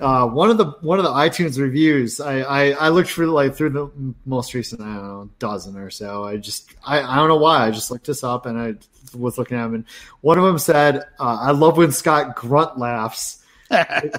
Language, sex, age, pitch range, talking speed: English, male, 30-49, 125-165 Hz, 235 wpm